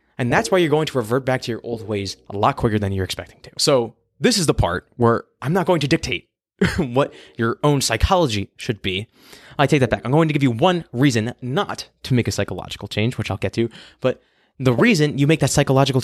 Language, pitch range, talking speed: English, 105-140 Hz, 240 wpm